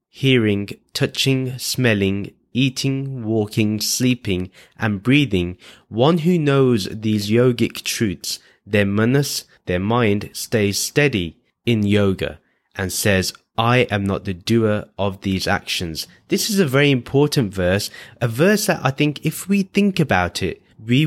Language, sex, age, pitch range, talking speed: English, male, 20-39, 100-130 Hz, 140 wpm